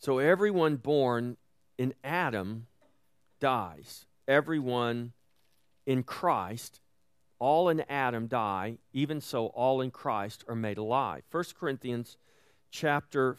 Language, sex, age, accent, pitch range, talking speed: English, male, 40-59, American, 115-150 Hz, 110 wpm